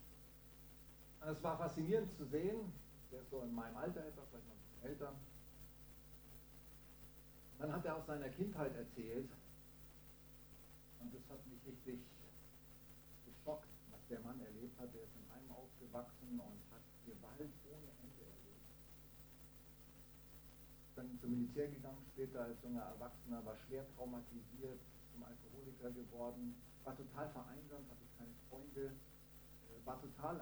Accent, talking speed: German, 130 wpm